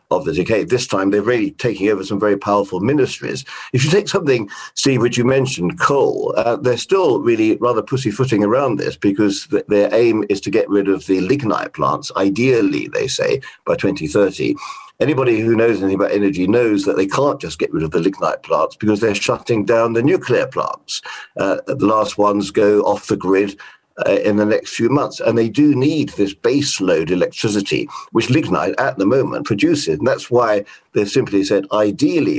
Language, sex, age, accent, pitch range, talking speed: English, male, 50-69, British, 100-135 Hz, 195 wpm